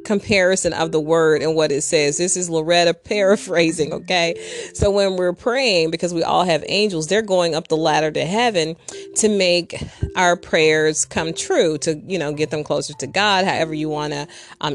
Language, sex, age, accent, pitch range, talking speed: English, female, 30-49, American, 155-185 Hz, 190 wpm